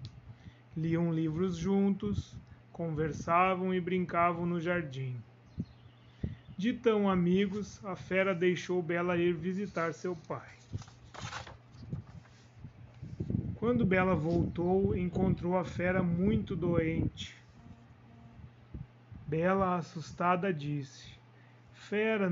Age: 30-49